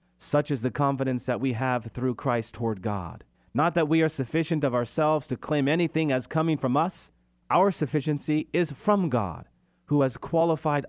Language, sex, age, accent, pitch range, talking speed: English, male, 30-49, American, 100-145 Hz, 180 wpm